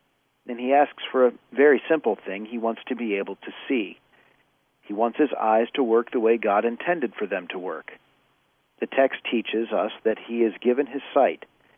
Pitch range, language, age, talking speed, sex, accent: 110-135 Hz, English, 40-59, 200 wpm, male, American